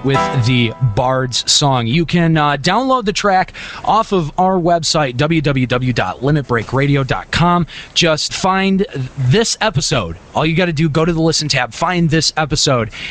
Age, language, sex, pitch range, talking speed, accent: 20-39, English, male, 125-175 Hz, 140 wpm, American